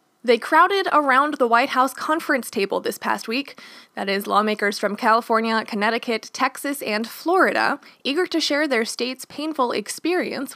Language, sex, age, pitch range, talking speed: English, female, 20-39, 215-285 Hz, 155 wpm